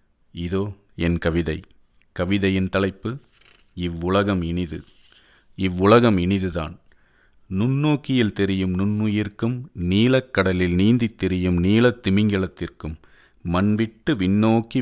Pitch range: 85-105 Hz